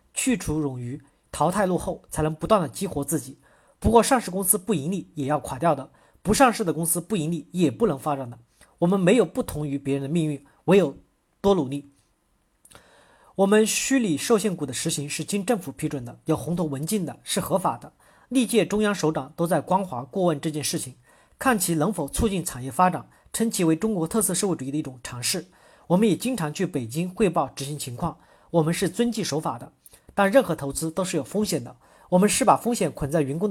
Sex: male